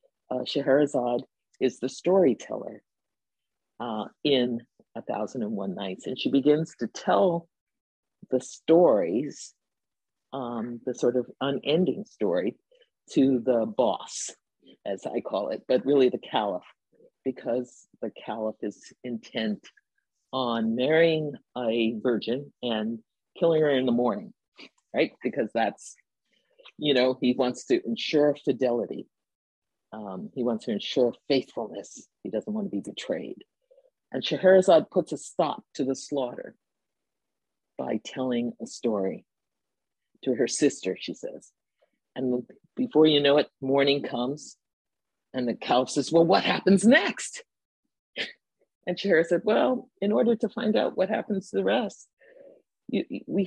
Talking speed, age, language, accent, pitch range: 135 wpm, 50-69, English, American, 125-195 Hz